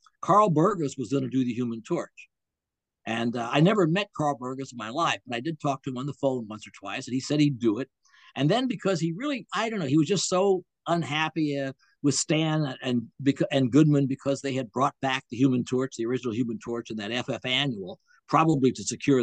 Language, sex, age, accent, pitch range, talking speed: English, male, 60-79, American, 120-155 Hz, 230 wpm